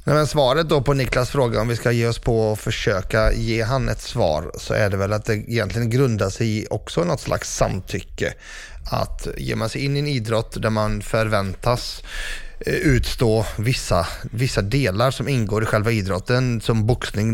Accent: native